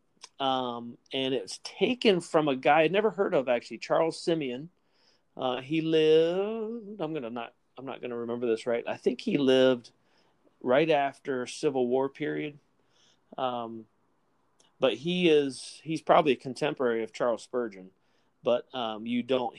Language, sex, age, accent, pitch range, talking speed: English, male, 30-49, American, 110-135 Hz, 155 wpm